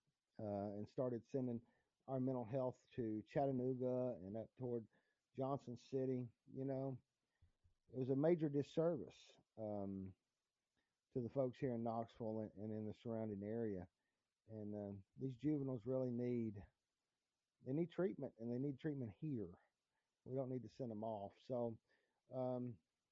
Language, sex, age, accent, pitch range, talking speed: English, male, 50-69, American, 115-140 Hz, 145 wpm